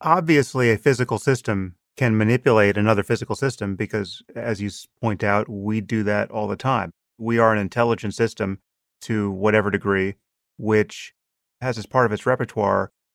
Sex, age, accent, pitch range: male, 30-49, American, 105-120 Hz